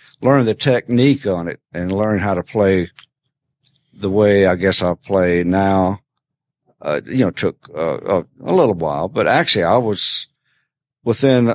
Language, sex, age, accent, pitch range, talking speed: English, male, 50-69, American, 95-120 Hz, 155 wpm